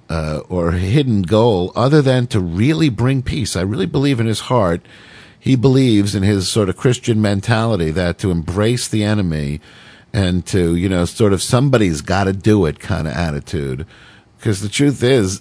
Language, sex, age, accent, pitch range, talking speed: English, male, 50-69, American, 90-115 Hz, 185 wpm